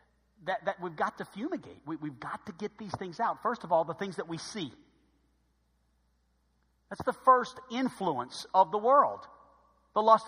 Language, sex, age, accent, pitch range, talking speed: English, male, 50-69, American, 155-235 Hz, 180 wpm